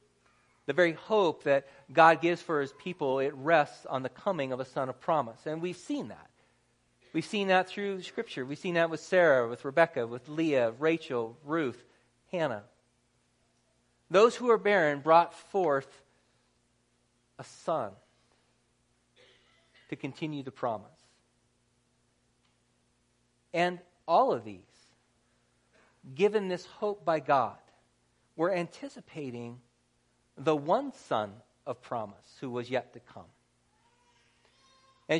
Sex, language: male, English